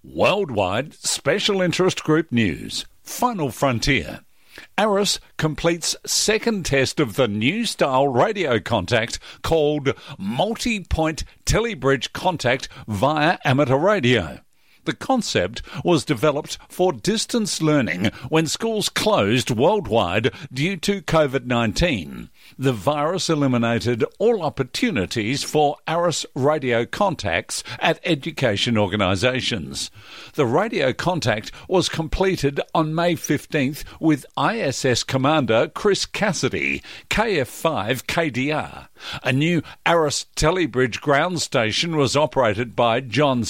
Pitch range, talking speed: 125-165 Hz, 100 wpm